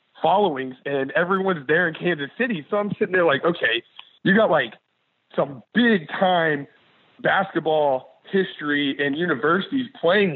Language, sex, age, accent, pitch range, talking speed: English, male, 30-49, American, 140-175 Hz, 140 wpm